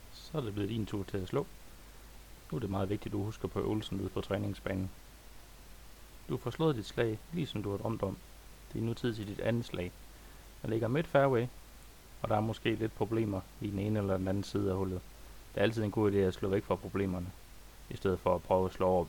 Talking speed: 250 wpm